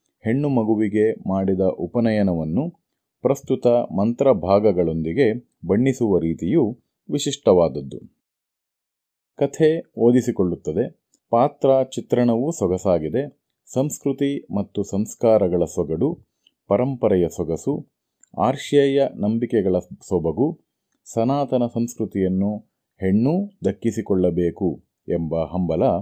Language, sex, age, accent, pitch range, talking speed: Kannada, male, 30-49, native, 90-130 Hz, 65 wpm